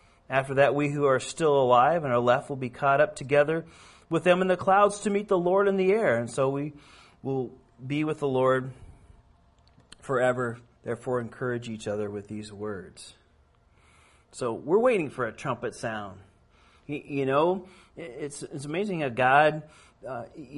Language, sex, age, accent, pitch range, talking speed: Finnish, male, 40-59, American, 120-150 Hz, 170 wpm